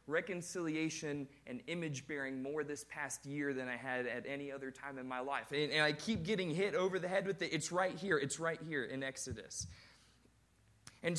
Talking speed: 200 wpm